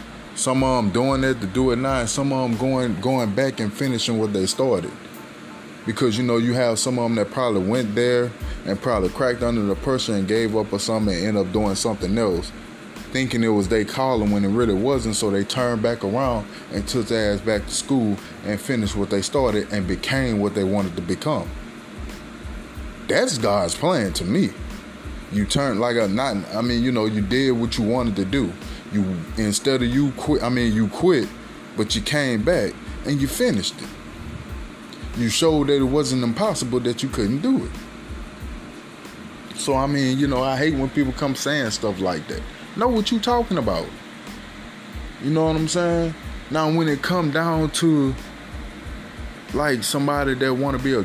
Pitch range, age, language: 105-135 Hz, 20-39, English